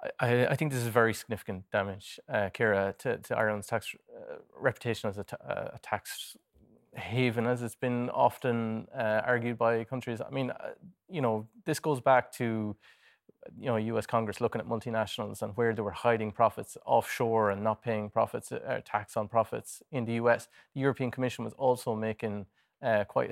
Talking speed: 185 wpm